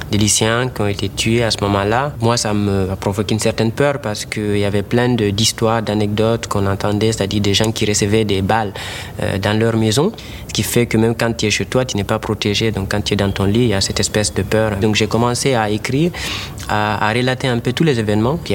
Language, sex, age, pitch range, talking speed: French, male, 30-49, 100-115 Hz, 250 wpm